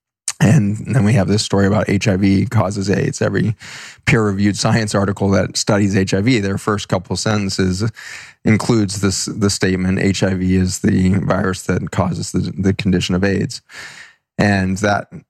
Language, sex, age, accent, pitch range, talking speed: English, male, 20-39, American, 95-105 Hz, 150 wpm